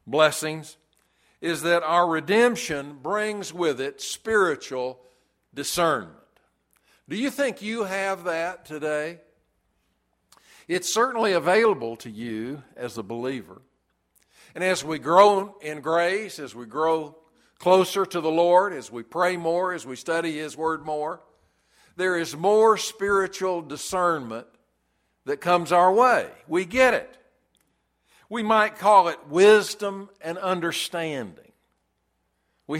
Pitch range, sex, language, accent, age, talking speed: 150-195 Hz, male, English, American, 60-79, 125 wpm